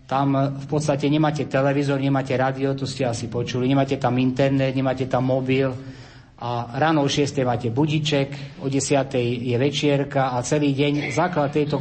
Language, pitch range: Slovak, 130-150 Hz